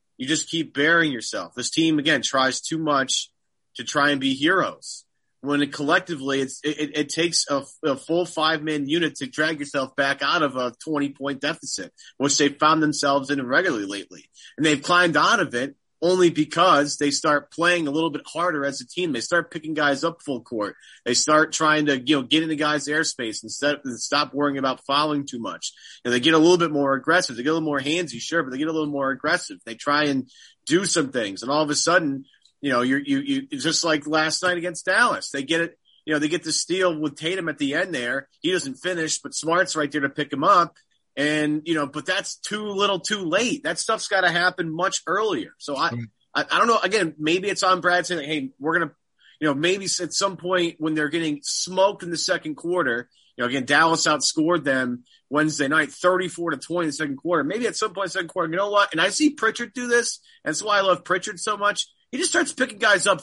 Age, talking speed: 30-49, 240 wpm